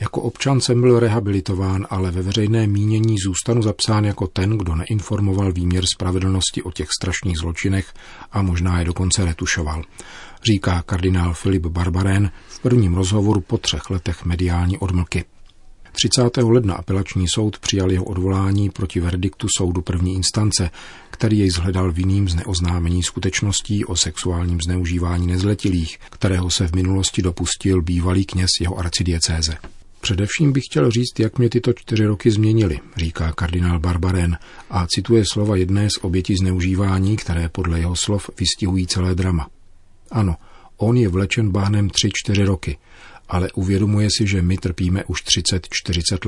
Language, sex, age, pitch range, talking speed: Czech, male, 40-59, 90-105 Hz, 145 wpm